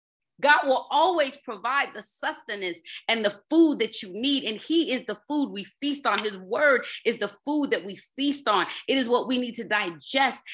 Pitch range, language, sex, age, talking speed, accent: 195-275 Hz, English, female, 30-49, 205 wpm, American